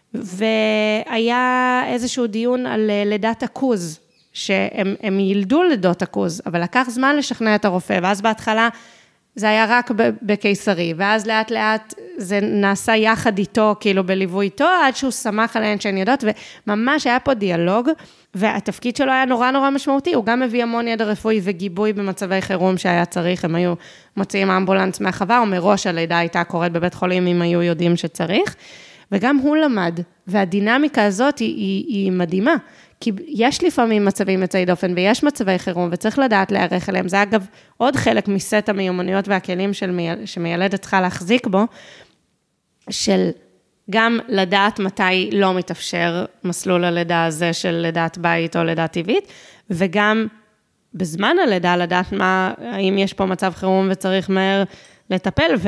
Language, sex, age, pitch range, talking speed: Hebrew, female, 20-39, 180-225 Hz, 140 wpm